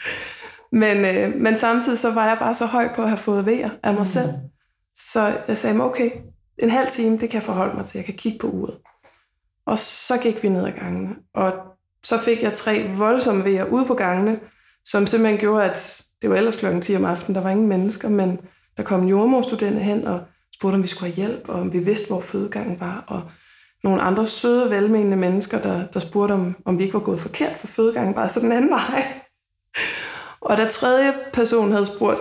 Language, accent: Danish, native